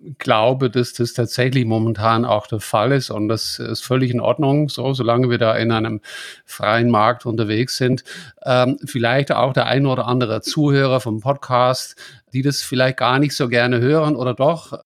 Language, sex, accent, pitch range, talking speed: English, male, German, 120-140 Hz, 180 wpm